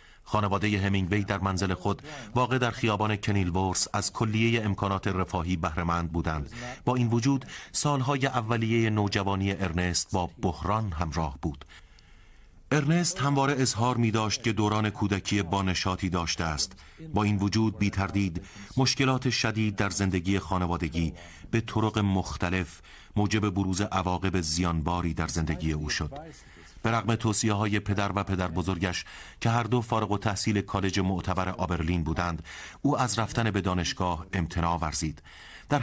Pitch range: 90-110 Hz